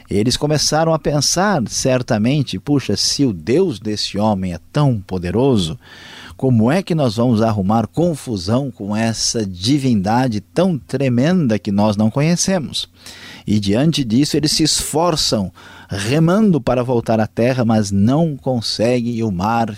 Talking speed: 145 wpm